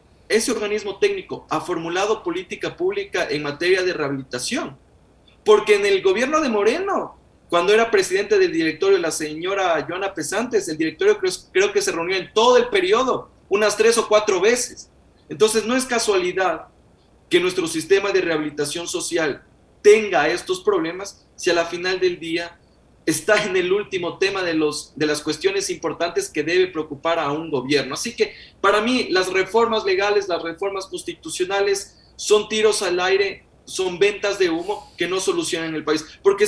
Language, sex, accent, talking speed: Spanish, male, Mexican, 170 wpm